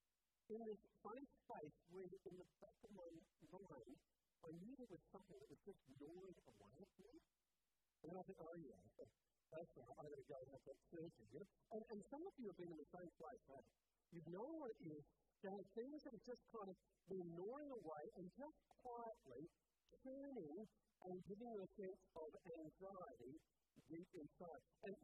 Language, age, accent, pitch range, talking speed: English, 50-69, American, 170-225 Hz, 190 wpm